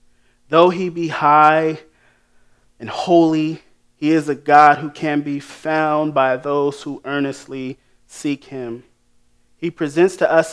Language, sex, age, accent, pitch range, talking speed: English, male, 30-49, American, 125-155 Hz, 135 wpm